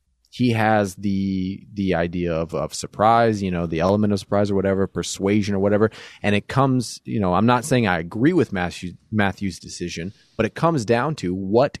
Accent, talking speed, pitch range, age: American, 200 wpm, 90-115 Hz, 30-49